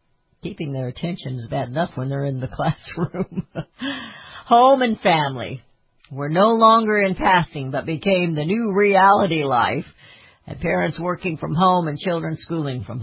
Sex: female